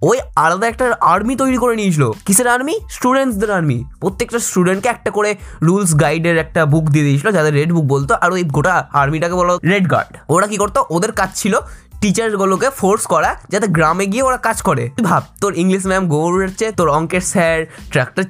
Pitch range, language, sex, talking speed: 145-200 Hz, Bengali, male, 190 wpm